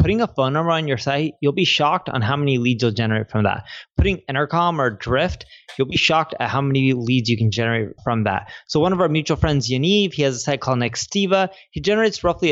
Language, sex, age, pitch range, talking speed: English, male, 20-39, 125-165 Hz, 240 wpm